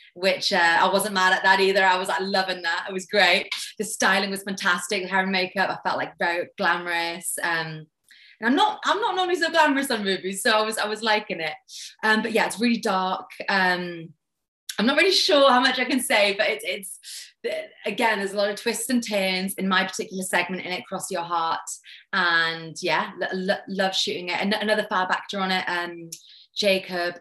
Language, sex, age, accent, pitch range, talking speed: English, female, 20-39, British, 185-235 Hz, 205 wpm